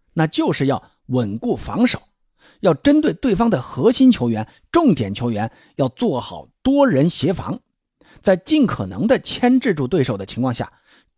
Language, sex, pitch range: Chinese, male, 125-200 Hz